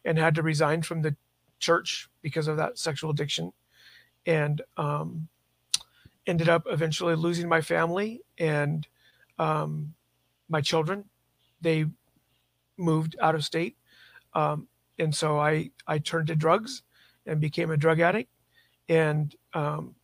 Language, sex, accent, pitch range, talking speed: English, male, American, 155-175 Hz, 130 wpm